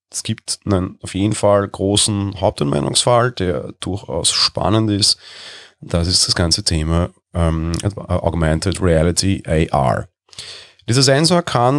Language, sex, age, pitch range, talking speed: German, male, 30-49, 85-105 Hz, 120 wpm